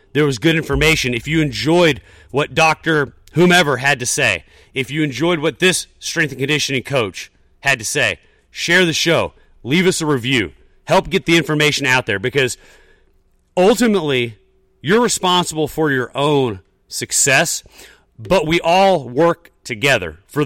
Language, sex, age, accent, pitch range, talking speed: English, male, 40-59, American, 115-160 Hz, 155 wpm